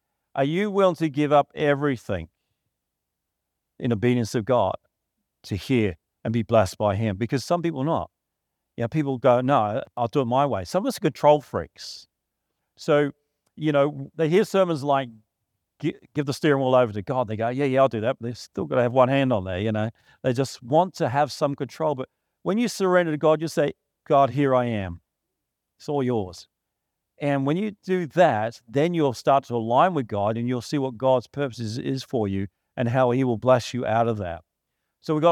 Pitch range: 115-150 Hz